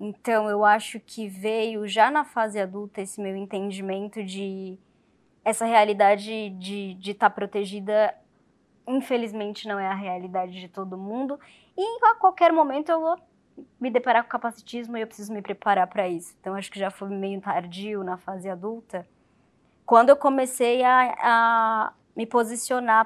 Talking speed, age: 160 wpm, 20-39